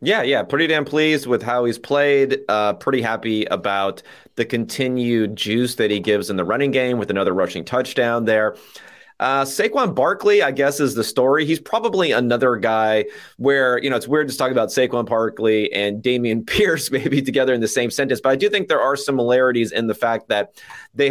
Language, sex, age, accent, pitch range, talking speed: English, male, 30-49, American, 115-145 Hz, 200 wpm